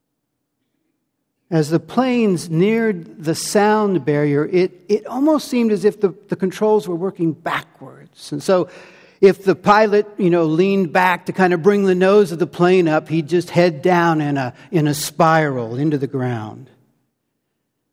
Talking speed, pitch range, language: 165 wpm, 150-195 Hz, English